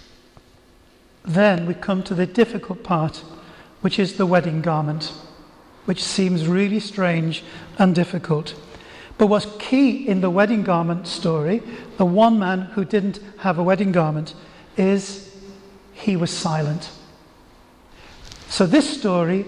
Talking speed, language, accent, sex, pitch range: 130 wpm, English, British, male, 175-210 Hz